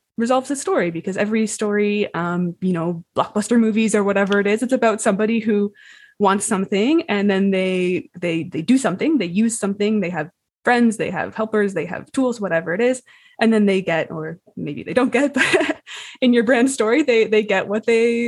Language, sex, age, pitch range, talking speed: English, female, 20-39, 180-230 Hz, 205 wpm